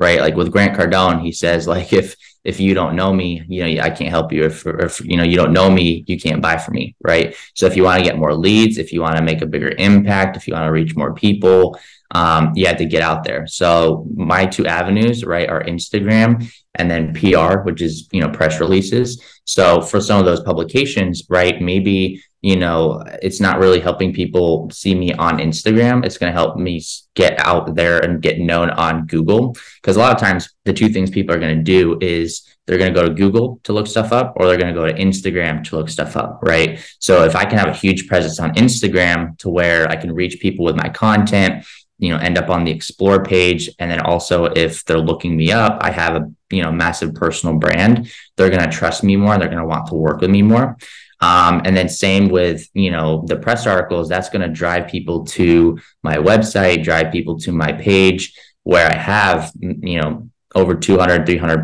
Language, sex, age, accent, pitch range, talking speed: English, male, 20-39, American, 80-95 Hz, 230 wpm